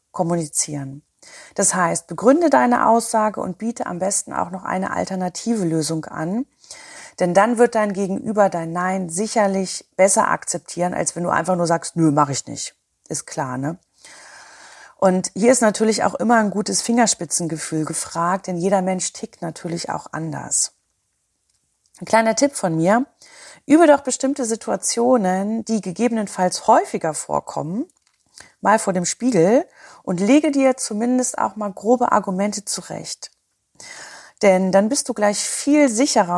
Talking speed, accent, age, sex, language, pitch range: 145 wpm, German, 30-49, female, German, 180-230 Hz